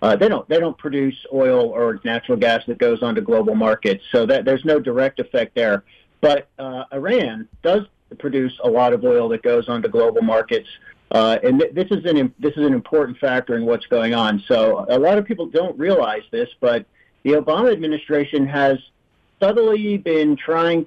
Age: 50-69